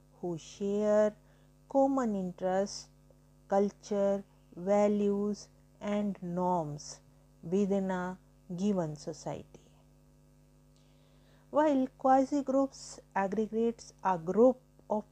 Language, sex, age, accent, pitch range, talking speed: English, female, 50-69, Indian, 185-220 Hz, 75 wpm